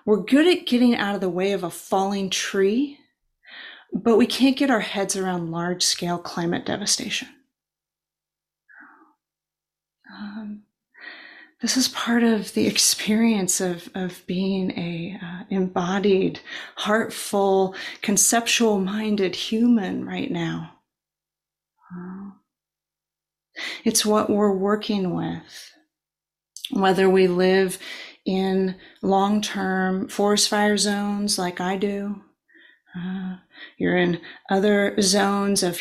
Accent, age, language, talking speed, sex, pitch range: American, 30-49, English, 110 wpm, female, 185-220 Hz